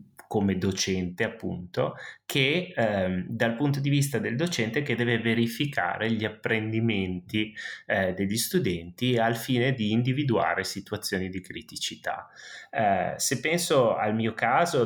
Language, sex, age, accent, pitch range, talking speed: Italian, male, 30-49, native, 100-120 Hz, 130 wpm